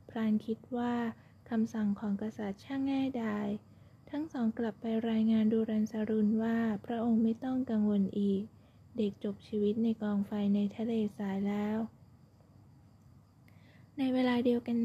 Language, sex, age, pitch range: Thai, female, 20-39, 210-235 Hz